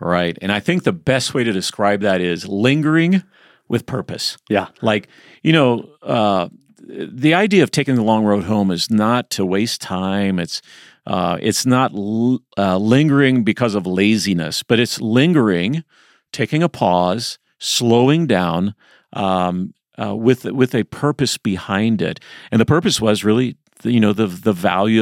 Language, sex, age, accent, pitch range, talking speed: English, male, 40-59, American, 100-130 Hz, 165 wpm